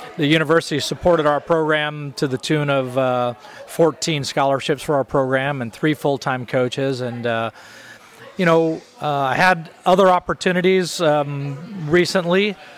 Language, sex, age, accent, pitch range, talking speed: English, male, 40-59, American, 135-160 Hz, 145 wpm